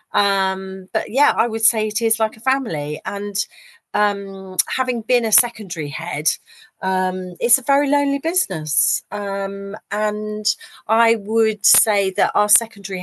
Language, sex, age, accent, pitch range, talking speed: English, female, 40-59, British, 170-210 Hz, 145 wpm